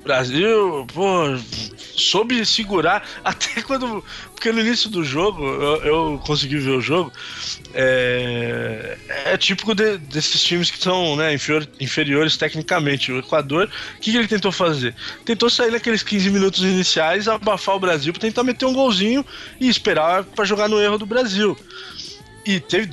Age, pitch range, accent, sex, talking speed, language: 20-39, 150-215 Hz, Brazilian, male, 160 wpm, Portuguese